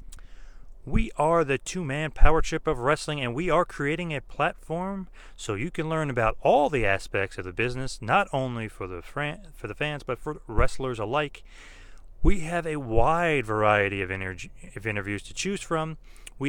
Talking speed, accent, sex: 180 wpm, American, male